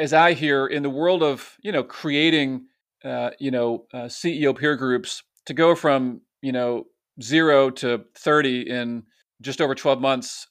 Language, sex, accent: English, male, American